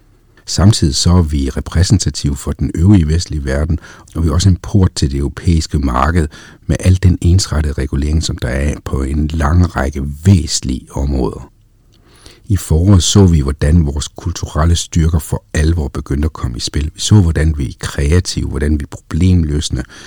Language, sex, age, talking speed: Danish, male, 60-79, 175 wpm